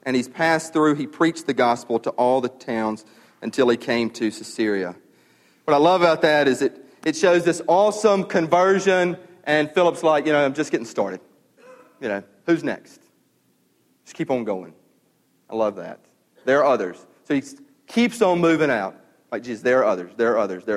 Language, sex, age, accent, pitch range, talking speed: English, male, 40-59, American, 150-200 Hz, 195 wpm